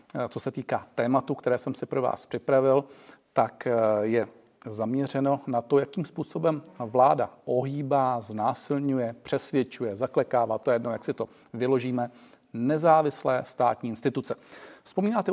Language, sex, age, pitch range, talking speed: Czech, male, 40-59, 120-140 Hz, 125 wpm